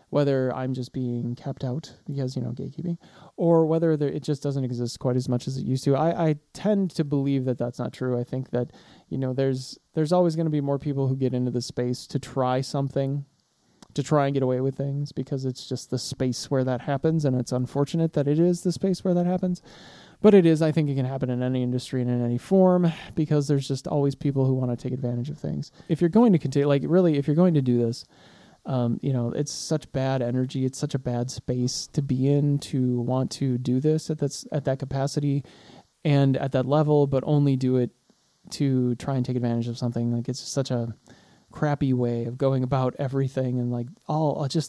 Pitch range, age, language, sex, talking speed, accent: 125-150 Hz, 20-39, English, male, 230 wpm, American